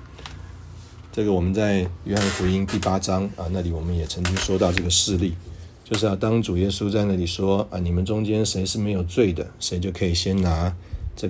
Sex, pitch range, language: male, 85-100 Hz, Chinese